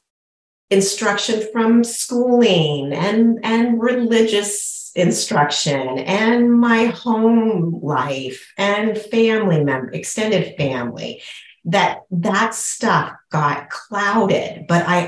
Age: 40-59